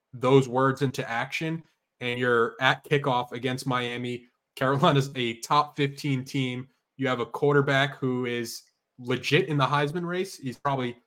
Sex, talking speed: male, 150 wpm